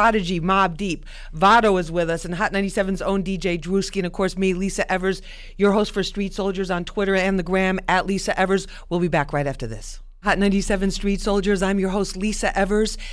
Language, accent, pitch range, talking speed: English, American, 180-210 Hz, 215 wpm